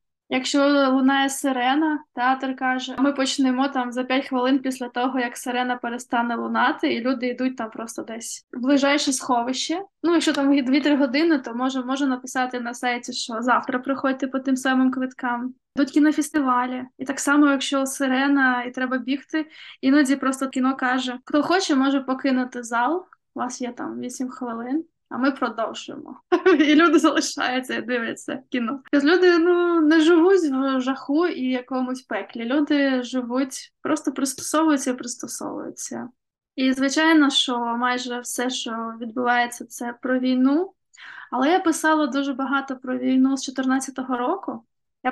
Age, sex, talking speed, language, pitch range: 20-39, female, 155 wpm, Ukrainian, 255-295 Hz